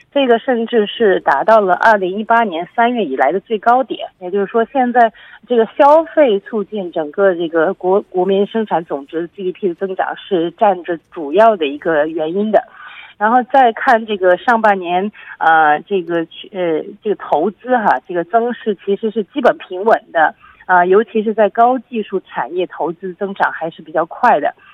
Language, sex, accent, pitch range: Korean, female, Chinese, 180-230 Hz